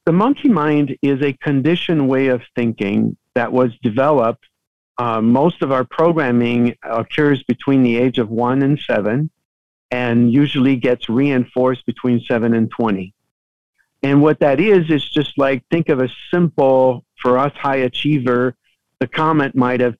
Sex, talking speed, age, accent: male, 155 wpm, 50-69, American